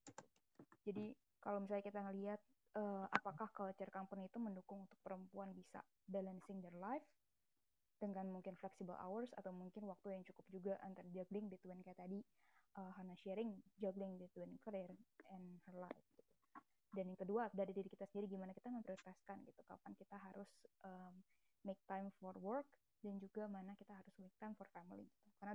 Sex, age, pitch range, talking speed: female, 20-39, 190-210 Hz, 165 wpm